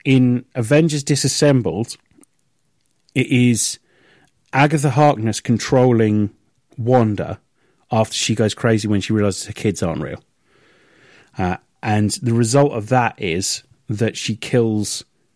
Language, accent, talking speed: English, British, 115 wpm